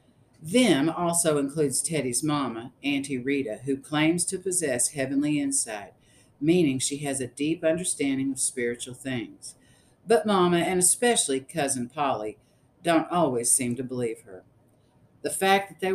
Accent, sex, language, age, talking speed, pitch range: American, female, English, 50-69, 145 wpm, 125-160 Hz